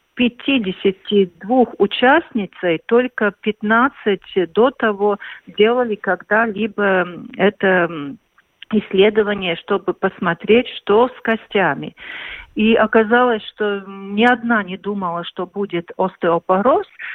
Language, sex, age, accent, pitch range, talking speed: Russian, female, 50-69, native, 190-230 Hz, 85 wpm